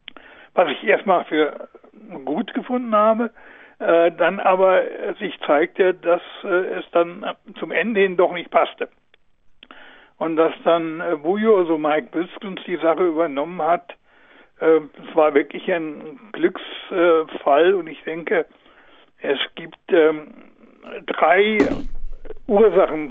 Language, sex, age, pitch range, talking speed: German, male, 60-79, 160-210 Hz, 125 wpm